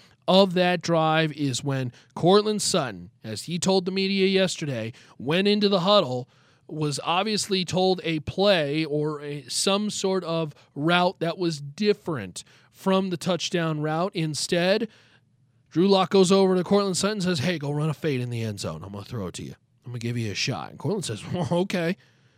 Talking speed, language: 195 wpm, English